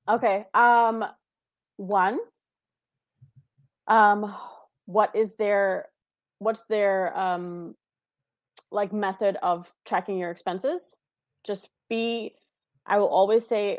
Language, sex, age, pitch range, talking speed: English, female, 20-39, 185-215 Hz, 95 wpm